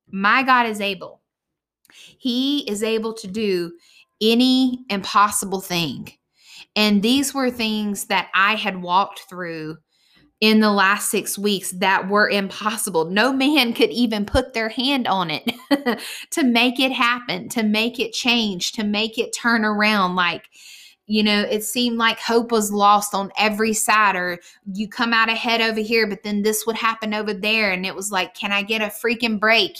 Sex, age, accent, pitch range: female, 20-39, American, 195-230 Hz